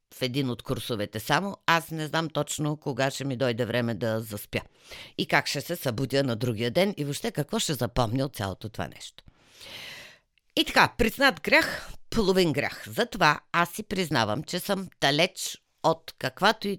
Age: 50-69